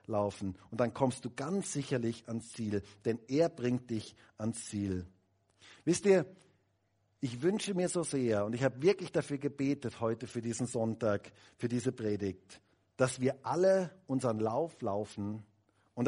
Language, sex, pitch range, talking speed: German, male, 110-150 Hz, 155 wpm